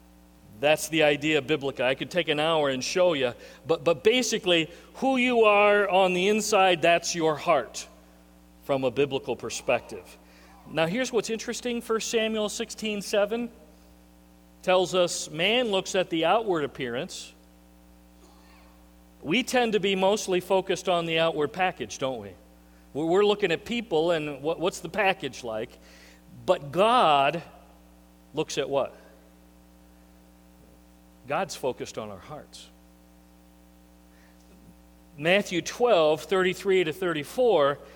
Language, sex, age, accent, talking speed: English, male, 40-59, American, 125 wpm